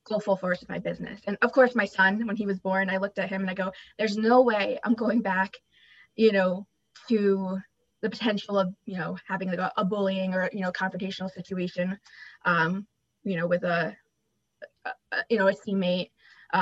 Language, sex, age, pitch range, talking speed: English, female, 20-39, 190-220 Hz, 200 wpm